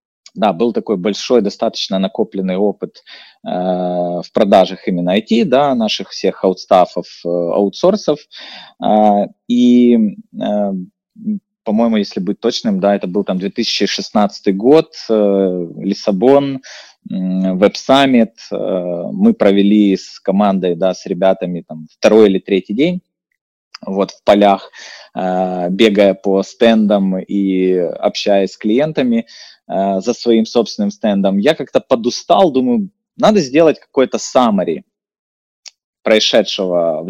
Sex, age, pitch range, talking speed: male, 20-39, 95-150 Hz, 115 wpm